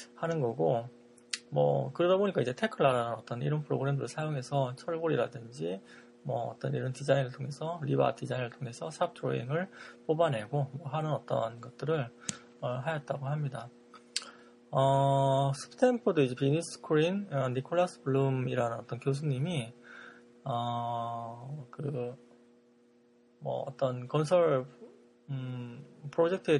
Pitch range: 120-150 Hz